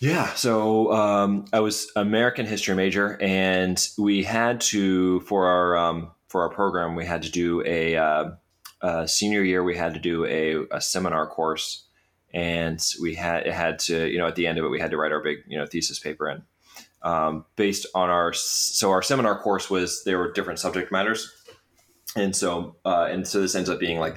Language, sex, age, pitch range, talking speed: English, male, 20-39, 85-100 Hz, 205 wpm